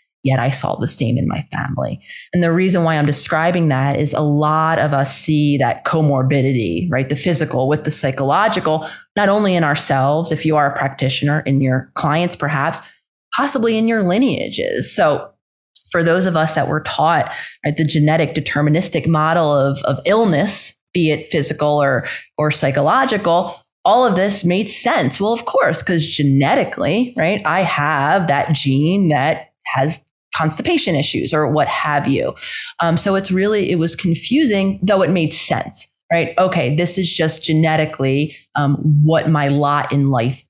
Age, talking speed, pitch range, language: 30-49, 170 wpm, 145-180 Hz, English